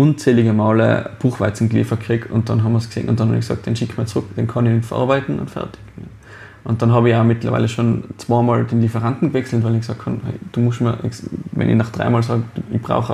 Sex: male